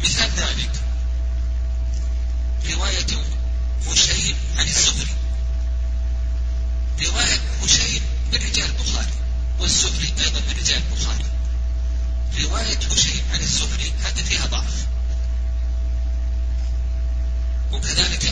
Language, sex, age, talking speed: Arabic, male, 50-69, 80 wpm